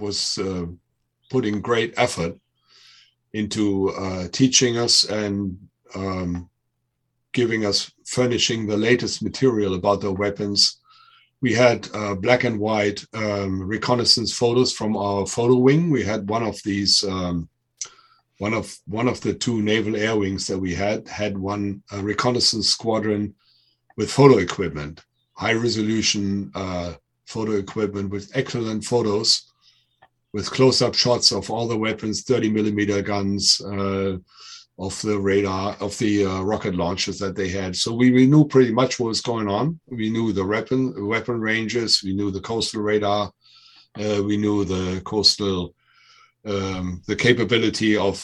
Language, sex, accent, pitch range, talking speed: English, male, German, 100-120 Hz, 145 wpm